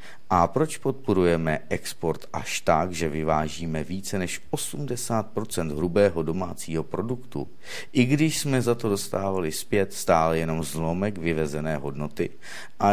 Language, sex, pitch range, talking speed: Czech, male, 80-125 Hz, 125 wpm